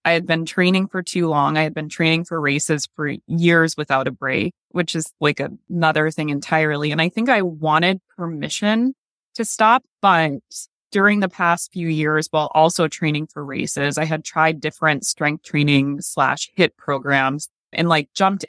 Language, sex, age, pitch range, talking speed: English, female, 20-39, 155-190 Hz, 180 wpm